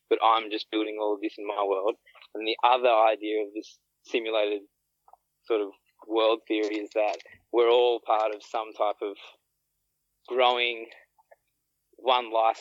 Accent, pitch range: Australian, 110-180 Hz